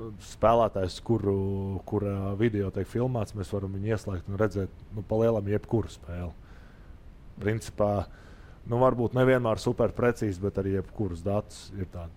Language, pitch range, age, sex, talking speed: English, 90-110 Hz, 20-39, male, 150 wpm